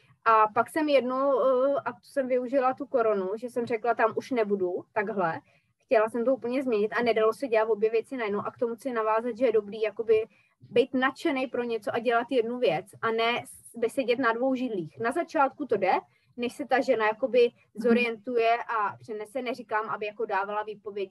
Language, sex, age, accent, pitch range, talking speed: Czech, female, 20-39, native, 215-260 Hz, 195 wpm